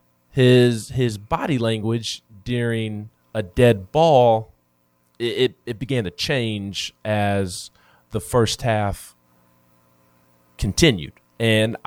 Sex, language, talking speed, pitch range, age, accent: male, English, 95 wpm, 95-120 Hz, 20-39, American